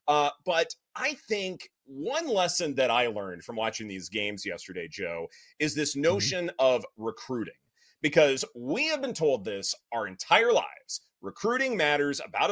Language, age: English, 30-49